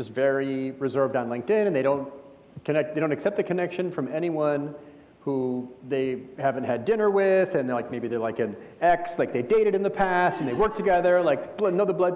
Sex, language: male, English